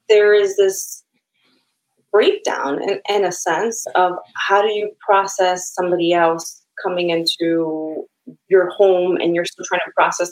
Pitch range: 180-265 Hz